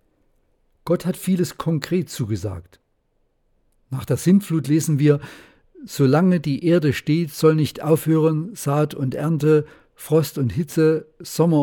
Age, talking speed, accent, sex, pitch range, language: 50-69, 125 wpm, German, male, 125-160 Hz, German